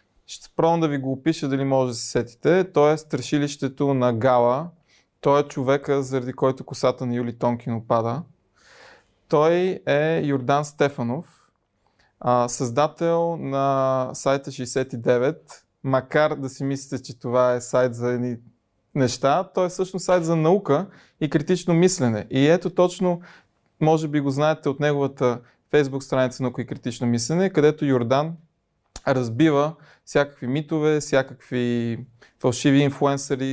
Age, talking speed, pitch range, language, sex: 20-39, 140 wpm, 125-150 Hz, Bulgarian, male